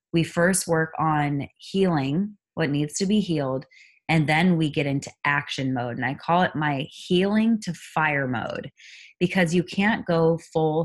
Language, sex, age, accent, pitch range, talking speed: English, female, 20-39, American, 150-185 Hz, 170 wpm